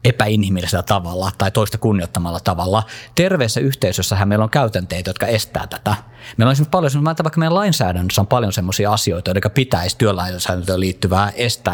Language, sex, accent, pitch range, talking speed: Finnish, male, native, 95-120 Hz, 160 wpm